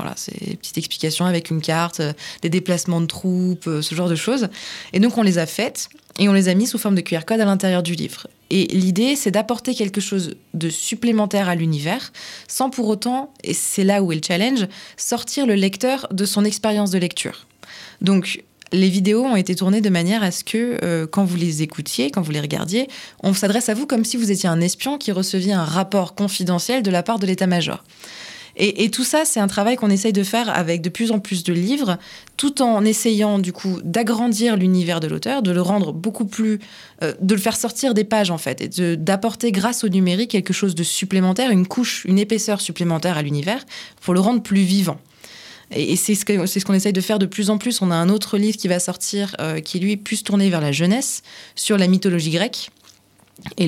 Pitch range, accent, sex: 175-215 Hz, French, female